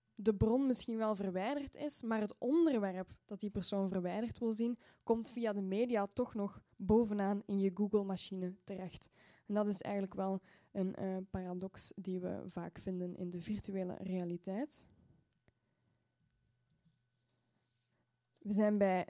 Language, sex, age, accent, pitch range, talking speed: Dutch, female, 10-29, Dutch, 195-225 Hz, 140 wpm